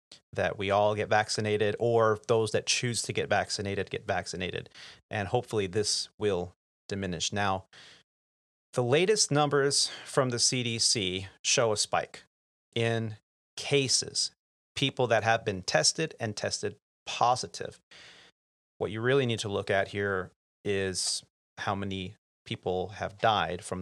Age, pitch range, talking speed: 30-49, 95-120 Hz, 135 wpm